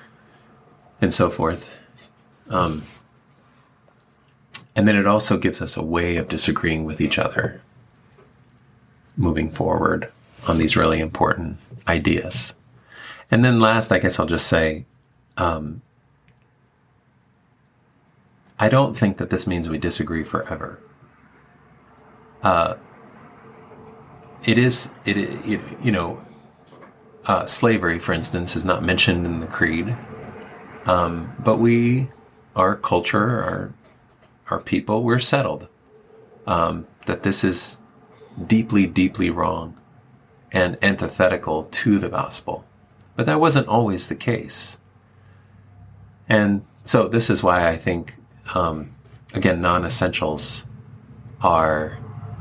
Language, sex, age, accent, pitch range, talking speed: English, male, 30-49, American, 90-120 Hz, 110 wpm